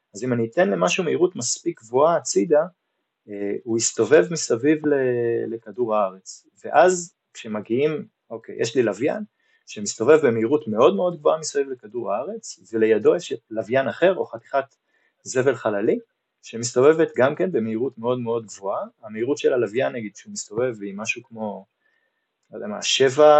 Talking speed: 150 wpm